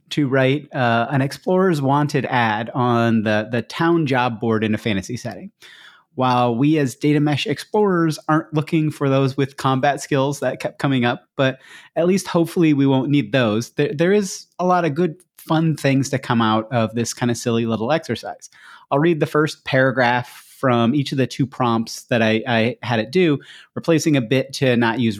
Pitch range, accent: 125-170 Hz, American